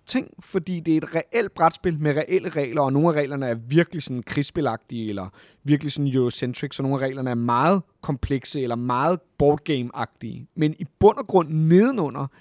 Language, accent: Danish, native